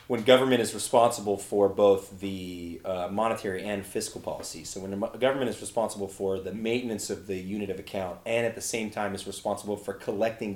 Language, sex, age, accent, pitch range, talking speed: English, male, 30-49, American, 100-120 Hz, 200 wpm